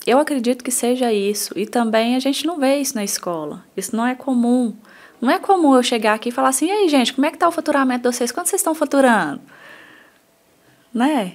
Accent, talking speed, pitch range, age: Brazilian, 225 wpm, 210-275 Hz, 20-39